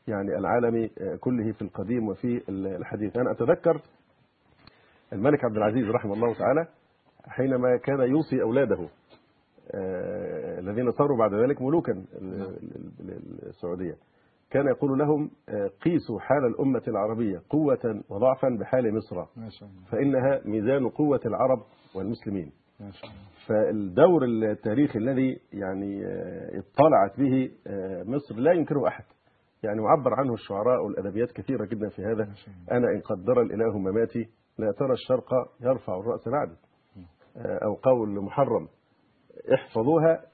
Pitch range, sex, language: 105-140 Hz, male, Arabic